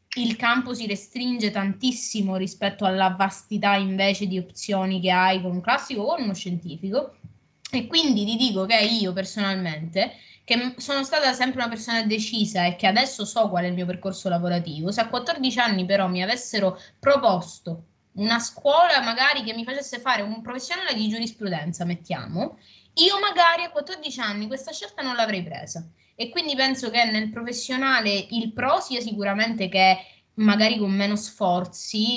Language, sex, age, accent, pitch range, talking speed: Italian, female, 20-39, native, 190-245 Hz, 165 wpm